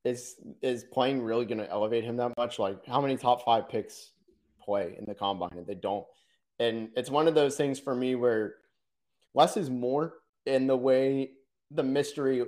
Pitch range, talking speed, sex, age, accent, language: 110-140 Hz, 190 wpm, male, 30-49, American, English